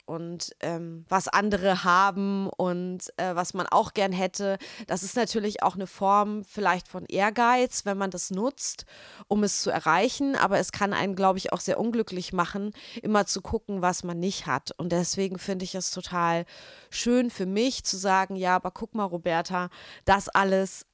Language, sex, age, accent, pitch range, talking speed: German, female, 30-49, German, 180-210 Hz, 185 wpm